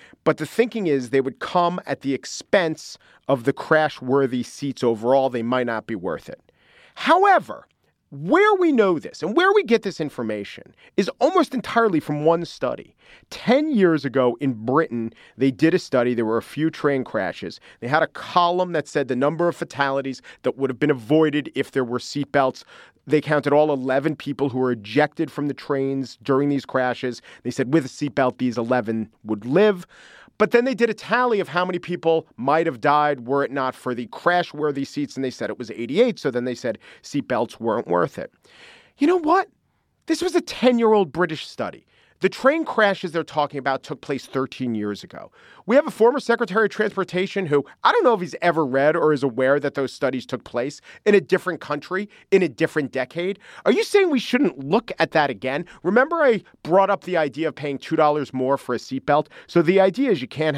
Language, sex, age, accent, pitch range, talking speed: English, male, 40-59, American, 135-190 Hz, 205 wpm